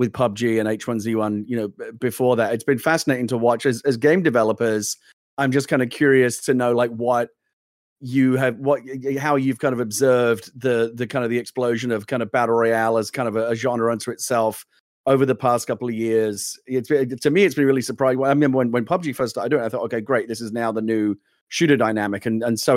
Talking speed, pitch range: 240 wpm, 115-140 Hz